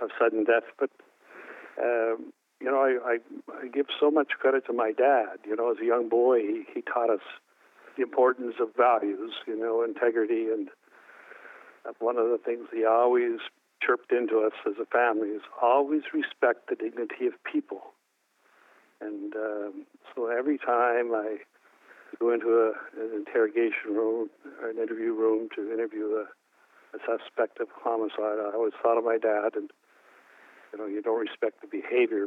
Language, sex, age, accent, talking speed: English, male, 60-79, American, 170 wpm